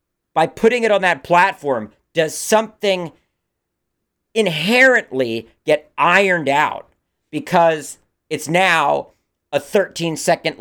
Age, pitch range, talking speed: 40-59, 125-170 Hz, 100 wpm